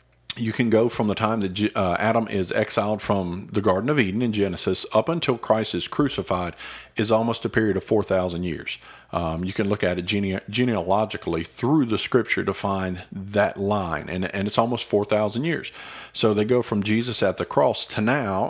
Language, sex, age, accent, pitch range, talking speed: English, male, 40-59, American, 95-115 Hz, 195 wpm